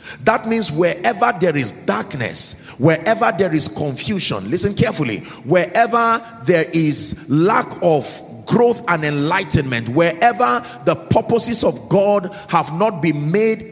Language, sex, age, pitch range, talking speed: English, male, 40-59, 150-200 Hz, 125 wpm